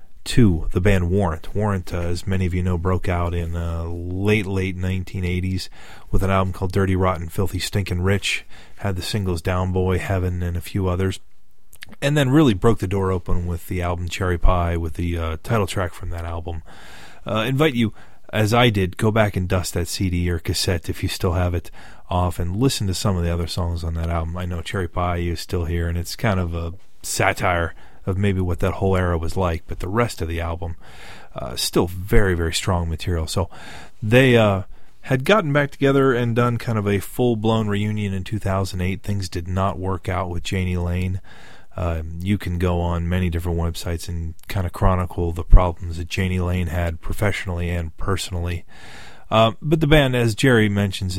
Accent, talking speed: American, 205 wpm